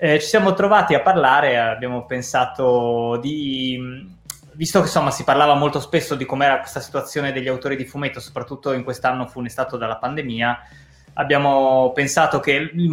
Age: 20-39